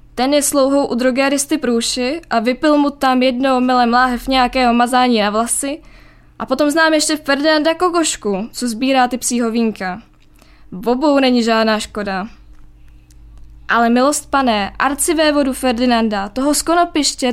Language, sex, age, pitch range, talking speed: Czech, female, 10-29, 225-285 Hz, 140 wpm